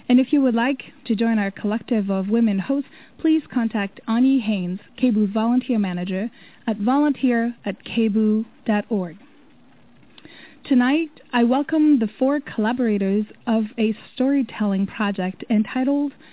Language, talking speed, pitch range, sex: English, 120 wpm, 205-260 Hz, female